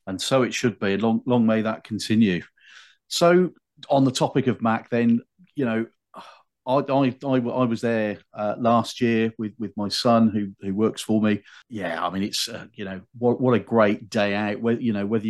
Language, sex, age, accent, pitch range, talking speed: English, male, 40-59, British, 100-120 Hz, 215 wpm